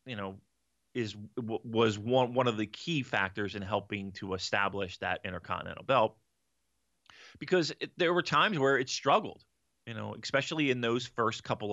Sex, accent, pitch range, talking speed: male, American, 100-135 Hz, 170 wpm